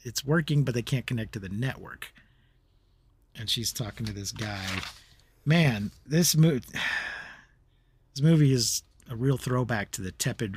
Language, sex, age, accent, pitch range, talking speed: English, male, 40-59, American, 100-130 Hz, 155 wpm